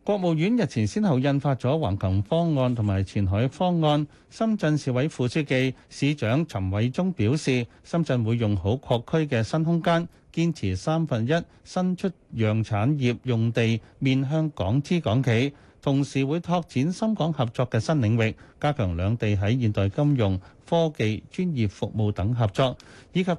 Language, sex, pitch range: Chinese, male, 110-160 Hz